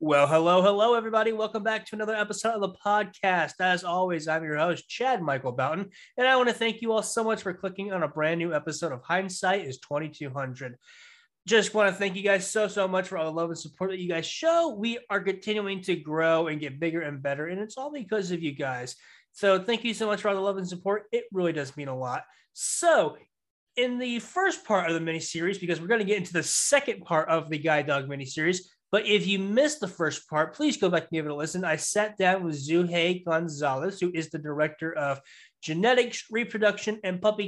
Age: 20-39